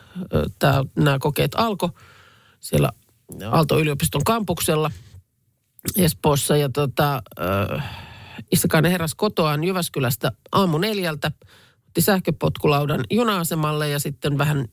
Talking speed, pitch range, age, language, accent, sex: 90 wpm, 135-180 Hz, 50-69, Finnish, native, male